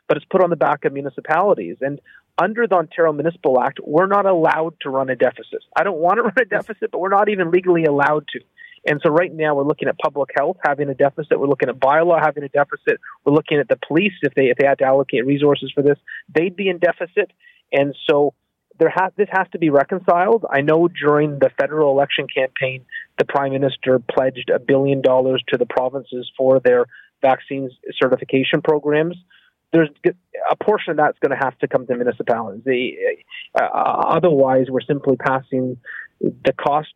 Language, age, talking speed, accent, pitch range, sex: English, 30-49, 200 wpm, American, 135-175 Hz, male